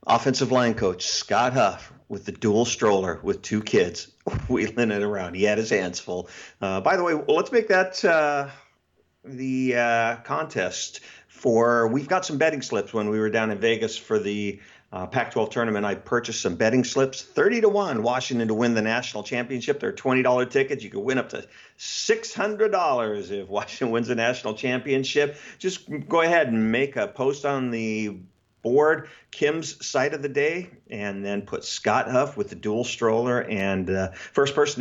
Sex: male